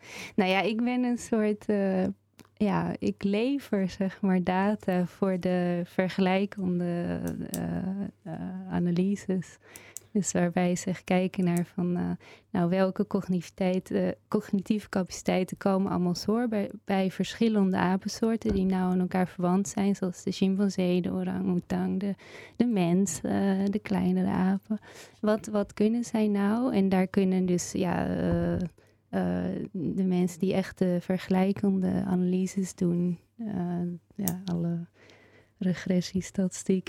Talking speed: 130 wpm